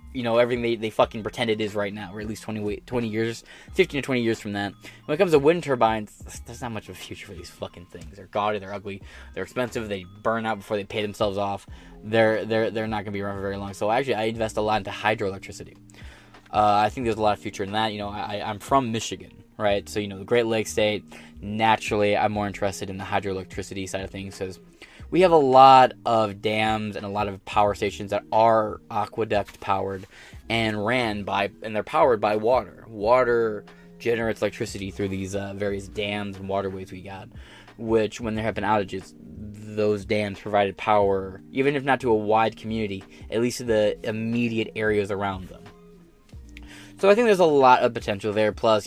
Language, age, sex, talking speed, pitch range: English, 10-29, male, 215 wpm, 100-110 Hz